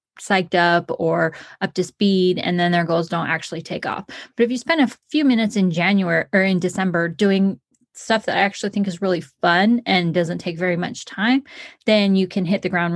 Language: English